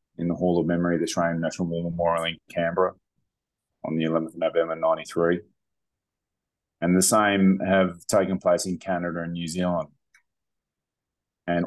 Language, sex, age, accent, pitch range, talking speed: English, male, 30-49, Australian, 85-95 Hz, 160 wpm